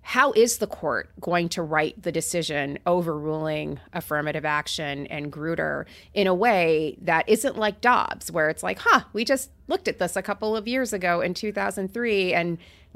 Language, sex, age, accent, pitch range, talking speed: English, female, 30-49, American, 155-200 Hz, 170 wpm